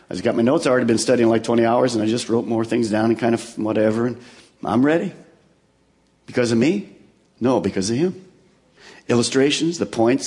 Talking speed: 205 wpm